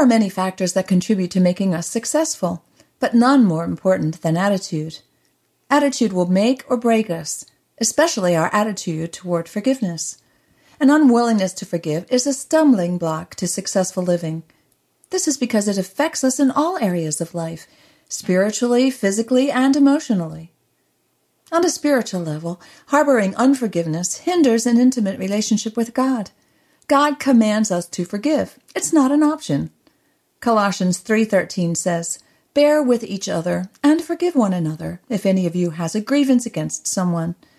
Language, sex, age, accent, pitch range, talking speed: English, female, 50-69, American, 175-260 Hz, 150 wpm